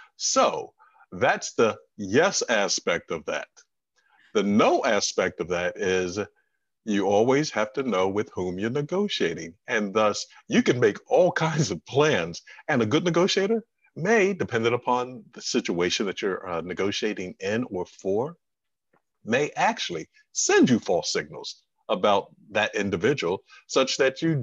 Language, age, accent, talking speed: English, 50-69, American, 145 wpm